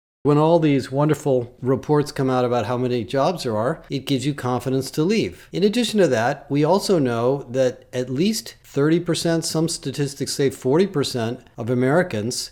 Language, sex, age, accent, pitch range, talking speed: English, male, 40-59, American, 125-155 Hz, 175 wpm